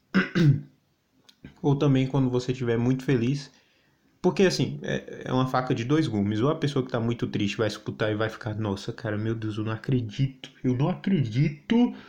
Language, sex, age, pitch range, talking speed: Portuguese, male, 20-39, 115-150 Hz, 185 wpm